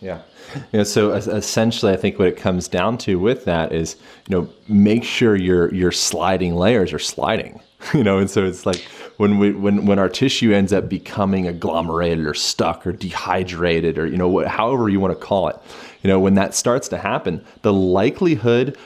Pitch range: 95-110 Hz